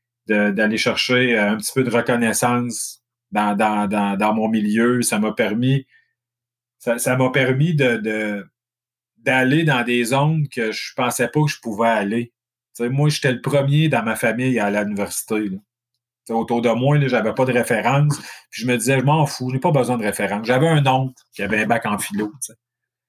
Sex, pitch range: male, 115-140 Hz